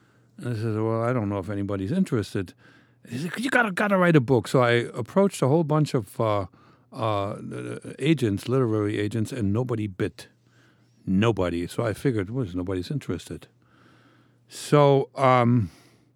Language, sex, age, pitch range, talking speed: English, male, 60-79, 100-130 Hz, 150 wpm